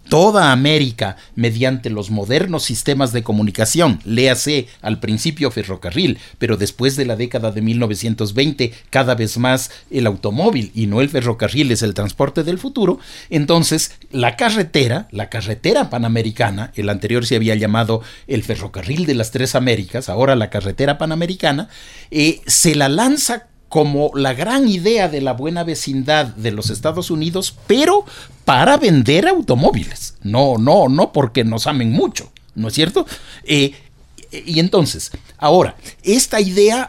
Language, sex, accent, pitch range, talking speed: Spanish, male, Mexican, 115-180 Hz, 150 wpm